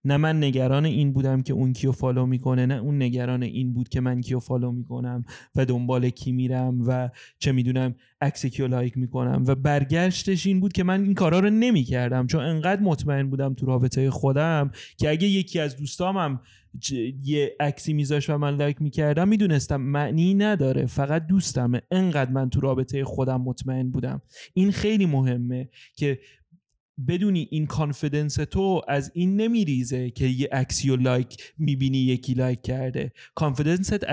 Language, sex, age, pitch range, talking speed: Persian, male, 30-49, 130-165 Hz, 165 wpm